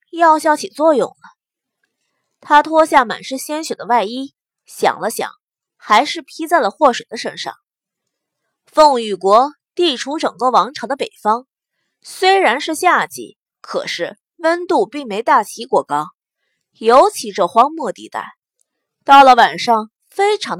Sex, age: female, 20-39